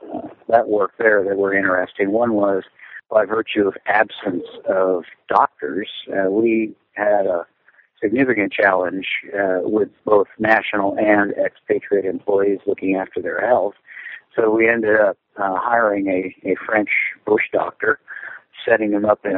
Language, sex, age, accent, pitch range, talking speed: English, male, 50-69, American, 95-105 Hz, 145 wpm